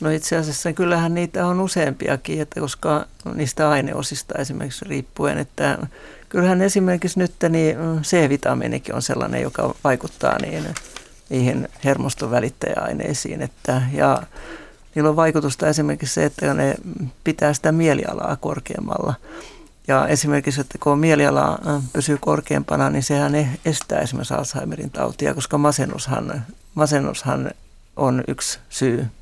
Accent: native